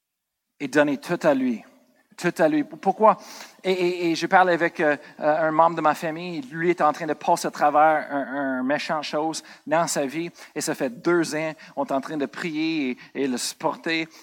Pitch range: 170-220 Hz